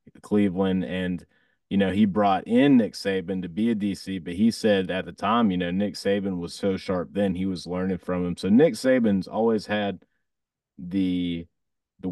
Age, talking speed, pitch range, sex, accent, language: 30-49, 195 wpm, 90-110 Hz, male, American, English